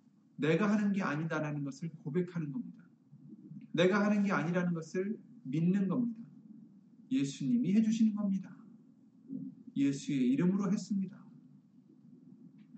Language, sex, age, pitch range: Korean, male, 40-59, 170-225 Hz